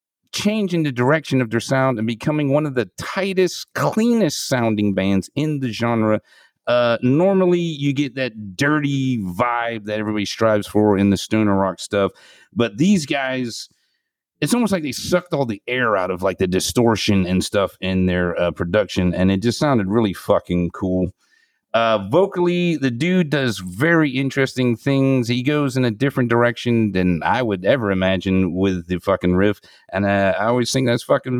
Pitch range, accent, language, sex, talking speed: 100-140 Hz, American, English, male, 175 wpm